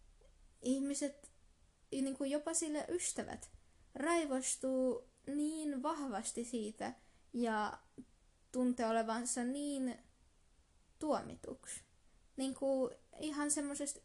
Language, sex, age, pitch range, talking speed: Finnish, female, 20-39, 220-255 Hz, 80 wpm